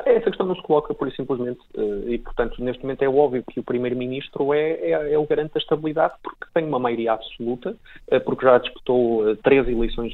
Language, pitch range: Portuguese, 110-150 Hz